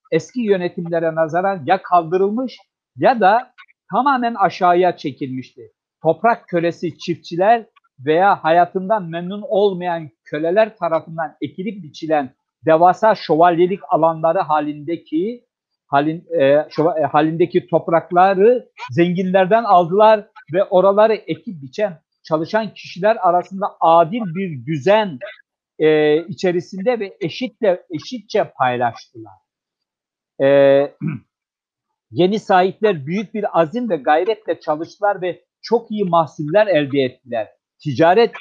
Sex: male